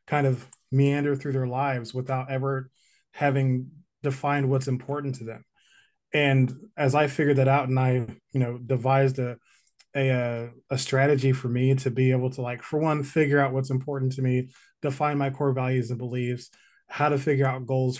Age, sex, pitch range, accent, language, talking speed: 20-39, male, 130-145 Hz, American, English, 185 wpm